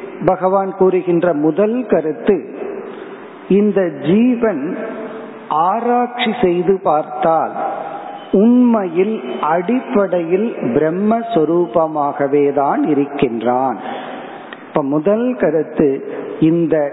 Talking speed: 65 wpm